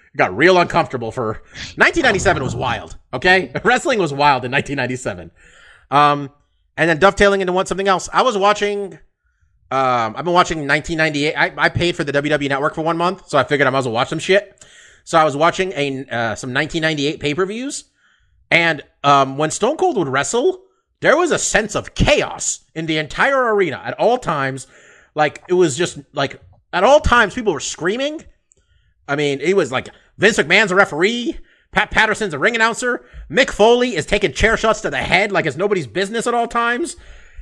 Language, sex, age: English, male, 30-49